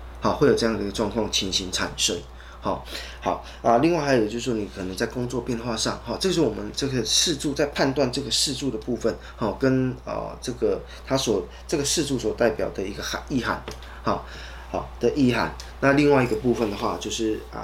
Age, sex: 20-39, male